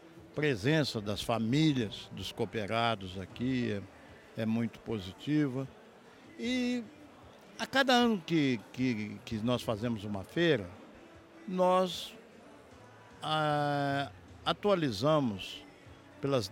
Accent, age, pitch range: Brazilian, 60-79, 115-170 Hz